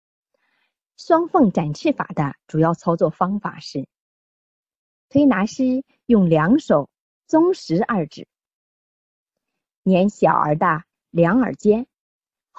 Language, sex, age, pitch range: Chinese, female, 30-49, 155-260 Hz